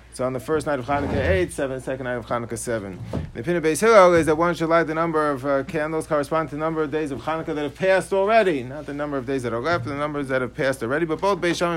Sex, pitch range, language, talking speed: male, 135-170 Hz, English, 300 wpm